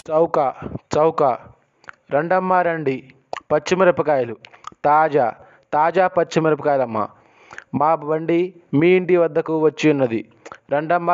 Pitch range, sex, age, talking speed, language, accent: 145-170 Hz, male, 20-39, 85 wpm, Telugu, native